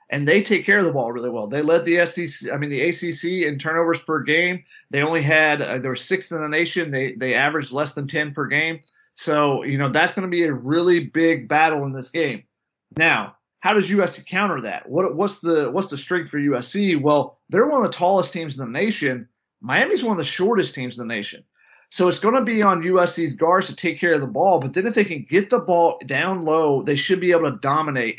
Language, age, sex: English, 30-49, male